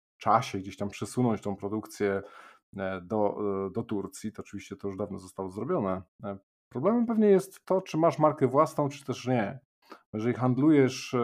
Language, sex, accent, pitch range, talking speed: Polish, male, native, 100-125 Hz, 155 wpm